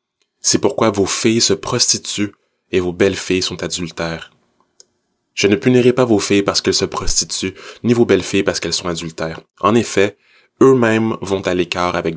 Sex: male